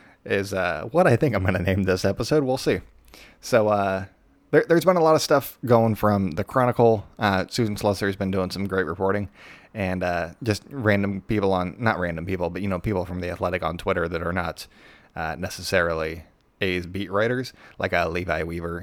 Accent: American